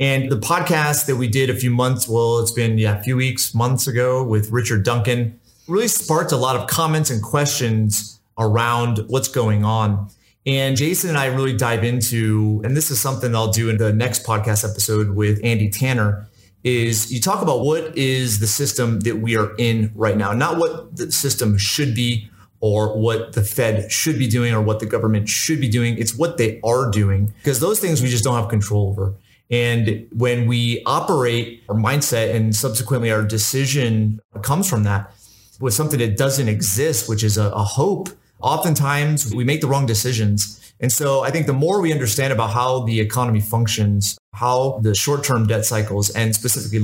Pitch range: 110-135 Hz